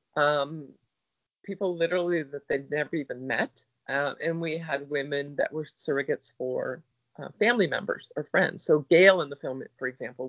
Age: 40-59